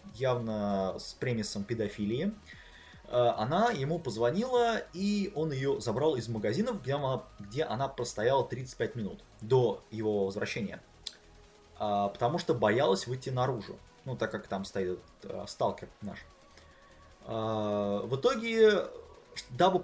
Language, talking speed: Russian, 110 wpm